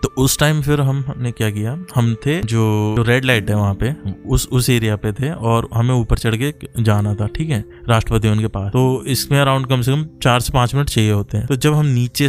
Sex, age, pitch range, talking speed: male, 20-39, 115-135 Hz, 250 wpm